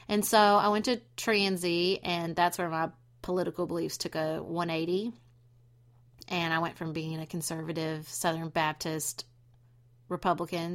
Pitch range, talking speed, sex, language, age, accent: 160-180 Hz, 140 wpm, female, English, 30-49, American